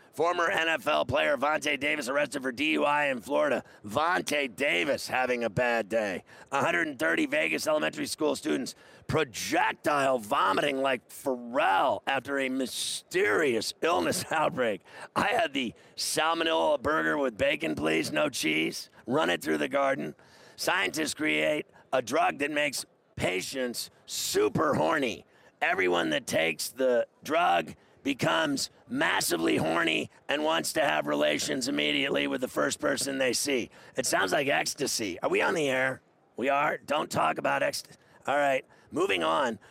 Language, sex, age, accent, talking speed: English, male, 40-59, American, 140 wpm